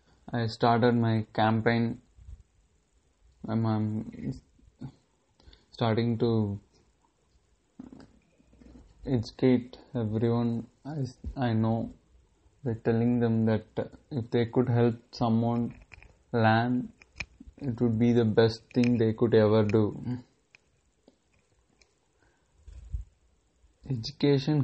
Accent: Indian